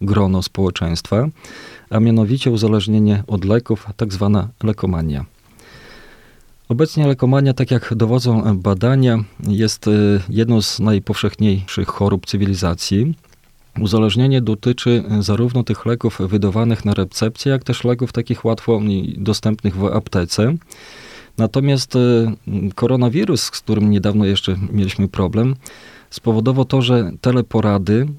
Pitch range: 100-120 Hz